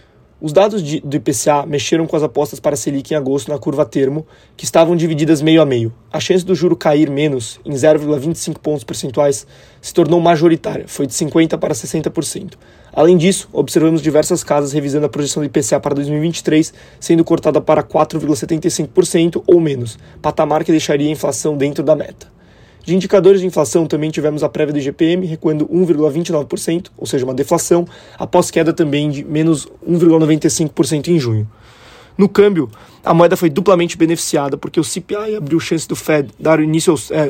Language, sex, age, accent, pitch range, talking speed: Portuguese, male, 20-39, Brazilian, 150-170 Hz, 170 wpm